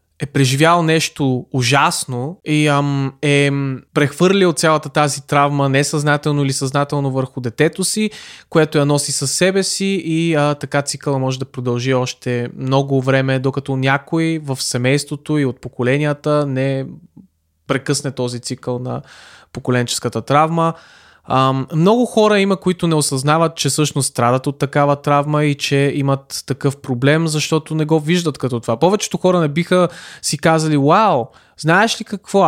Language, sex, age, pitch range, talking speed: Bulgarian, male, 20-39, 130-160 Hz, 150 wpm